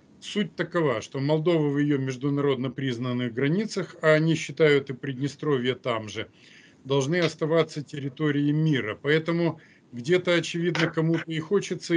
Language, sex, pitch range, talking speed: Russian, male, 135-170 Hz, 130 wpm